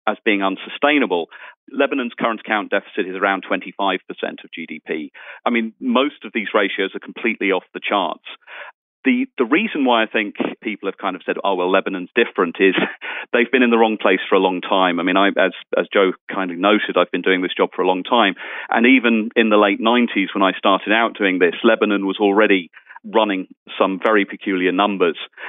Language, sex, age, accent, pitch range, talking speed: English, male, 40-59, British, 95-120 Hz, 205 wpm